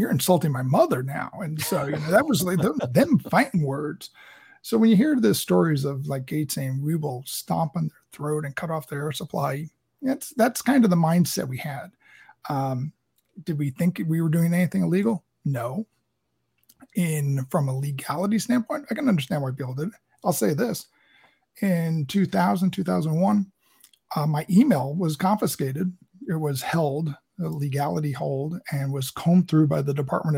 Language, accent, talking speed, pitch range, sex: English, American, 175 wpm, 140-180 Hz, male